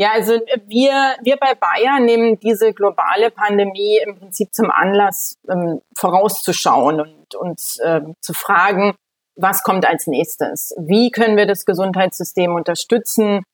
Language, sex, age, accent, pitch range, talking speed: German, female, 30-49, German, 190-225 Hz, 135 wpm